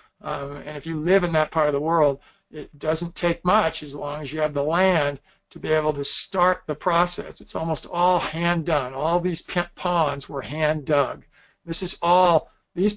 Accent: American